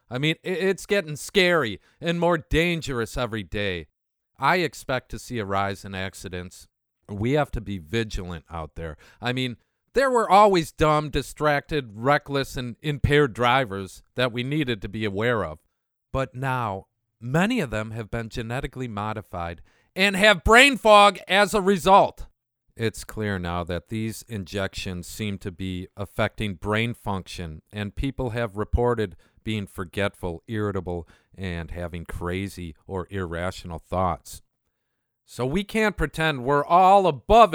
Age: 50-69